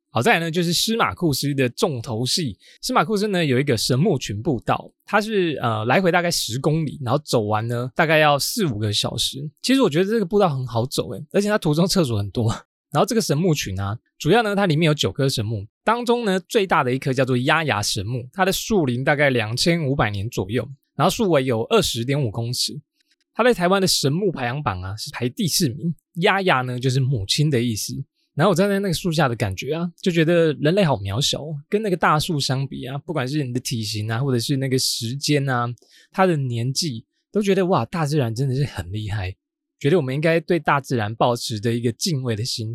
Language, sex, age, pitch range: Chinese, male, 20-39, 125-180 Hz